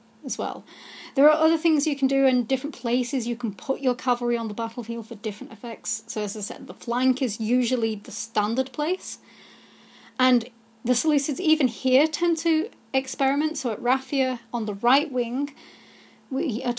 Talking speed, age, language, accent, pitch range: 180 wpm, 30-49, English, British, 225-270 Hz